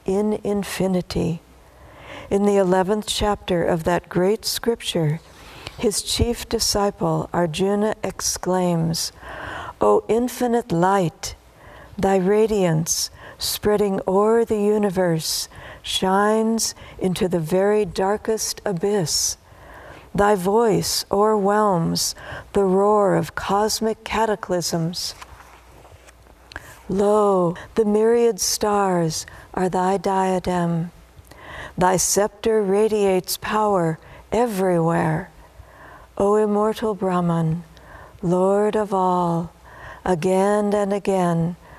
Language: English